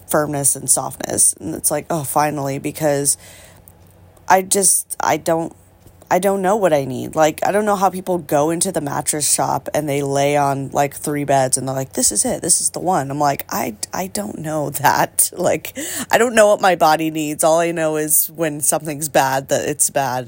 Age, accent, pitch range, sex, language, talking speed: 20-39, American, 145-180 Hz, female, English, 215 wpm